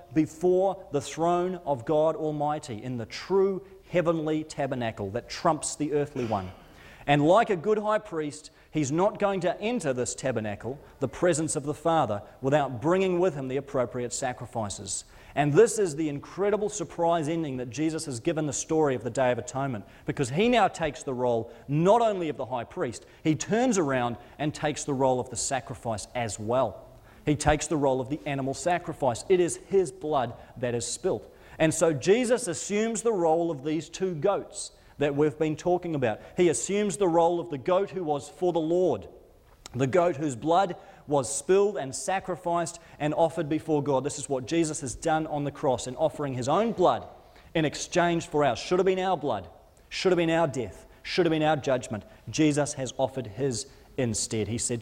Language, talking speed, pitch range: English, 195 wpm, 130-170 Hz